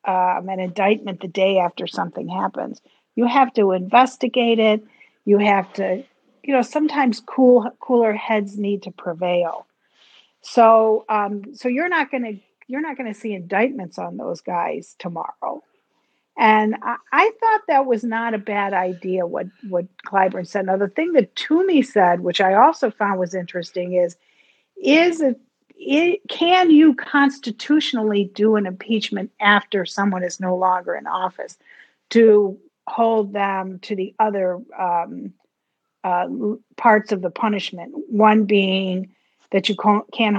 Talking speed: 145 wpm